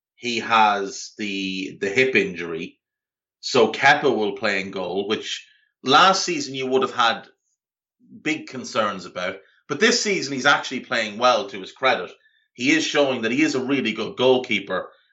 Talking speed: 165 wpm